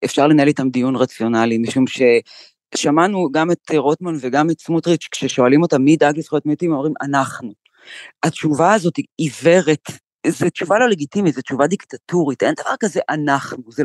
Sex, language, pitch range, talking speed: female, Hebrew, 145-195 Hz, 165 wpm